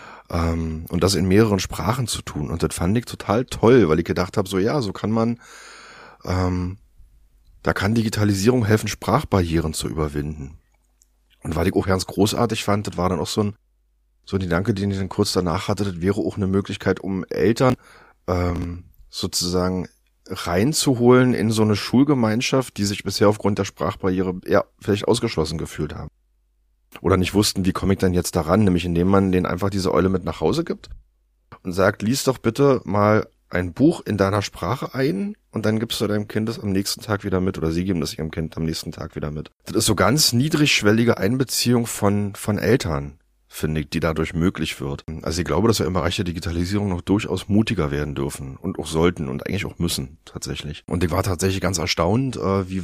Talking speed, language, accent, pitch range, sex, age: 200 wpm, German, German, 85-105 Hz, male, 30-49